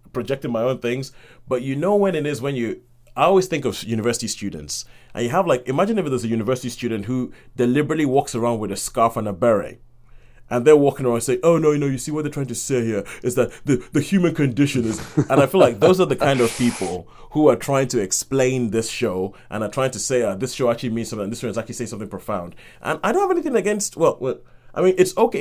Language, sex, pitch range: English, male, 115-135 Hz